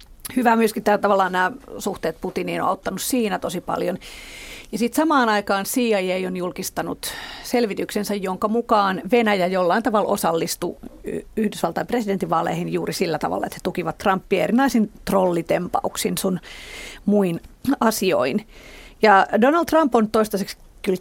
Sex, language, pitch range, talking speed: female, Finnish, 185-235 Hz, 130 wpm